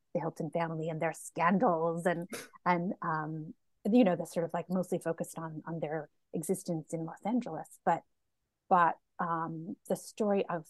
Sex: female